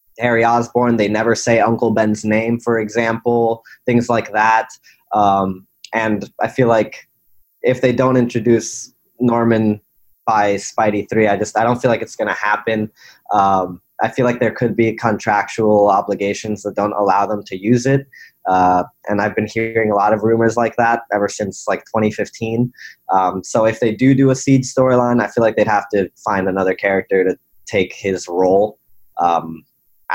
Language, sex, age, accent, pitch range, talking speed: English, male, 20-39, American, 100-120 Hz, 180 wpm